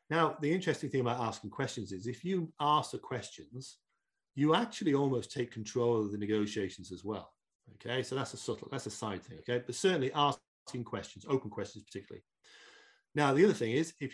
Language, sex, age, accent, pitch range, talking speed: English, male, 40-59, British, 110-150 Hz, 195 wpm